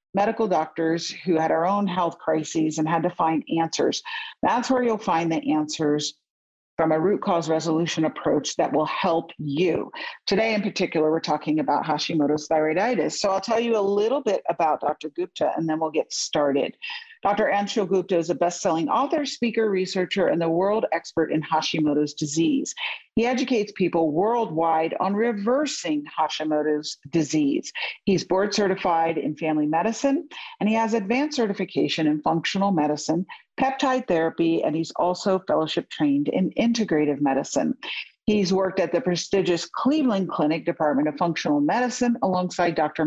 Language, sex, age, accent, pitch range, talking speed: English, female, 50-69, American, 160-215 Hz, 160 wpm